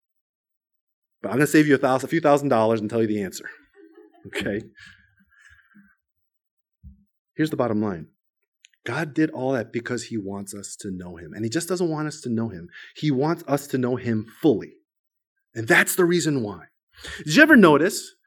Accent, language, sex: American, English, male